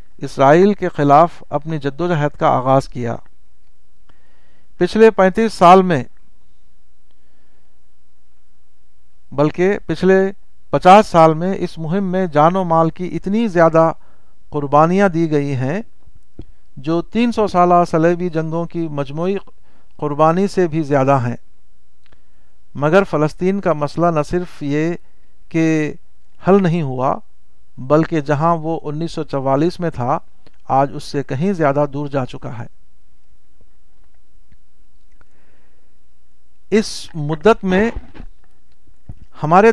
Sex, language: male, Urdu